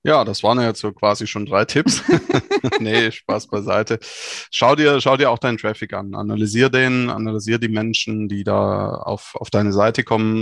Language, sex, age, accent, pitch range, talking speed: German, male, 20-39, German, 105-120 Hz, 185 wpm